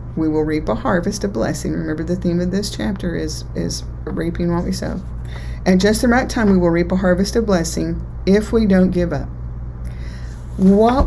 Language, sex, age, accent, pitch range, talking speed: English, female, 40-59, American, 150-185 Hz, 200 wpm